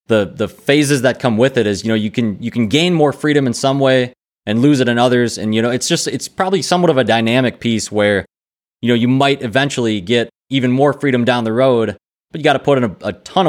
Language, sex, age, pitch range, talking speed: English, male, 20-39, 105-130 Hz, 265 wpm